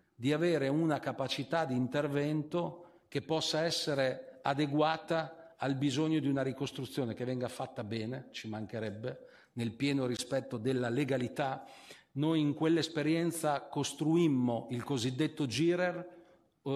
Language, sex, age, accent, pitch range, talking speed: Italian, male, 50-69, native, 130-155 Hz, 120 wpm